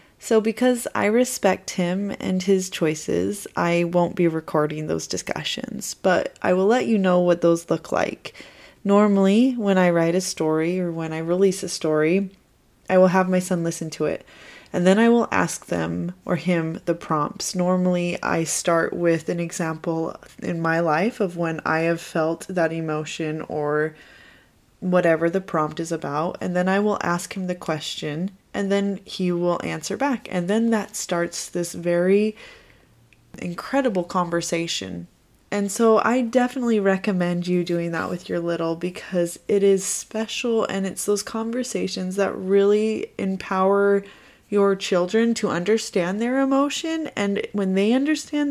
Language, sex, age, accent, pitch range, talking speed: English, female, 20-39, American, 170-210 Hz, 160 wpm